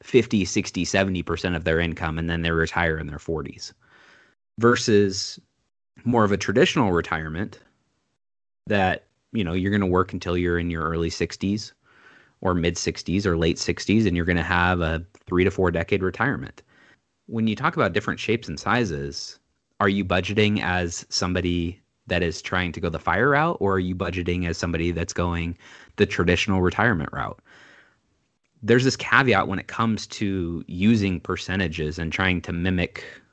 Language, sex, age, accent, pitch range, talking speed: English, male, 30-49, American, 85-105 Hz, 170 wpm